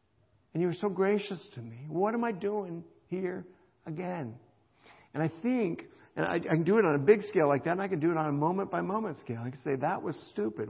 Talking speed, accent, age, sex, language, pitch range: 240 wpm, American, 60-79, male, English, 120-160 Hz